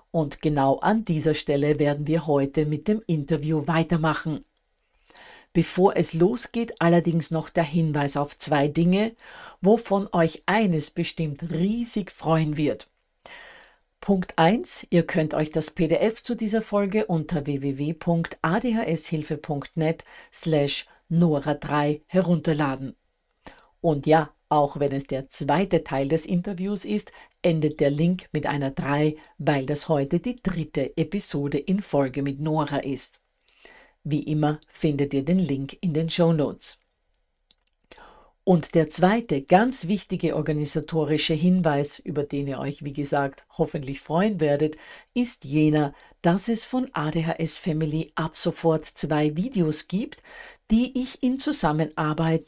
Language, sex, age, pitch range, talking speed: German, female, 50-69, 150-180 Hz, 130 wpm